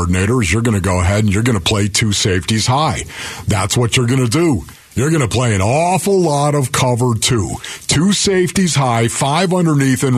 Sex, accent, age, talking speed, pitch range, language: male, American, 50-69, 210 wpm, 115-145 Hz, English